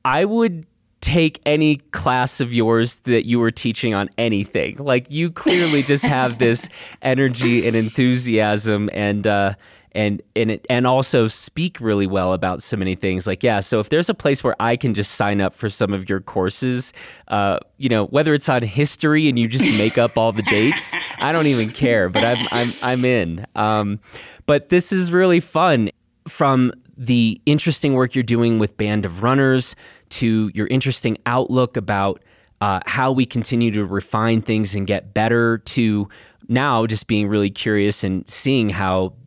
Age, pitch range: 20-39, 105-130 Hz